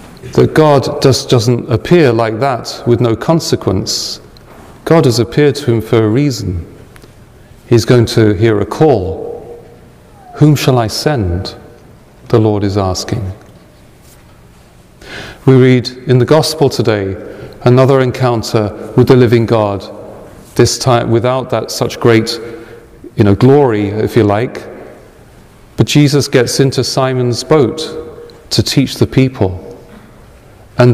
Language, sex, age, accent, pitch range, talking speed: English, male, 40-59, British, 110-130 Hz, 130 wpm